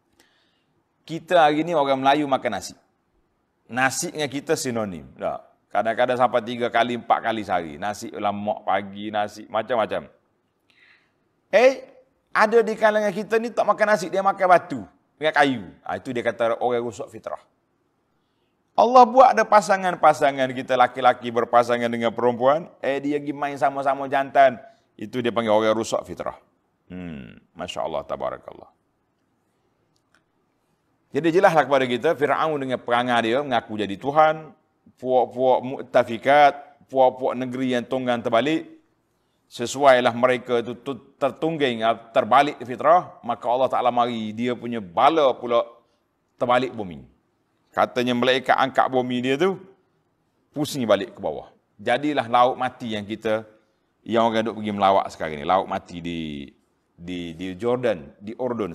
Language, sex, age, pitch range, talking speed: Malay, male, 30-49, 115-150 Hz, 140 wpm